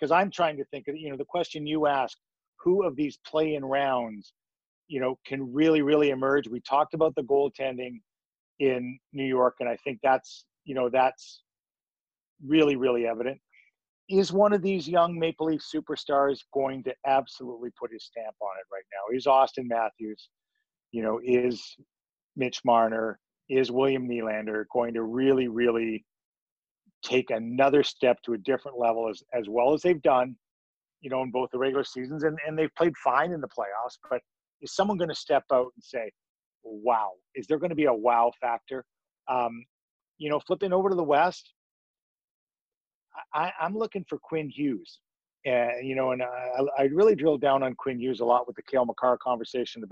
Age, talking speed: 40-59, 185 wpm